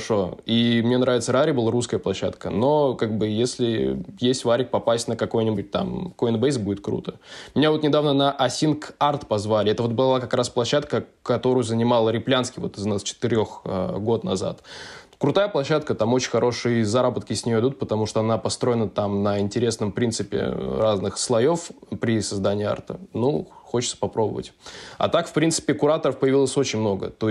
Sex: male